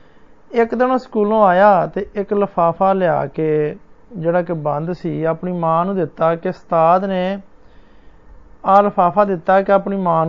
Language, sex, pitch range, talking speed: Hindi, male, 175-215 Hz, 135 wpm